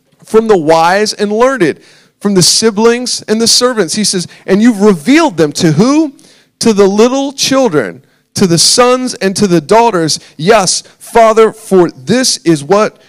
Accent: American